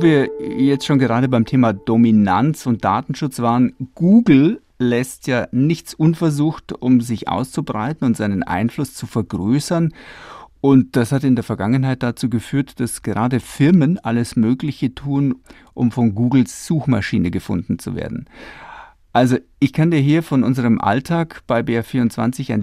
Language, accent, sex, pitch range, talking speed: German, German, male, 115-140 Hz, 150 wpm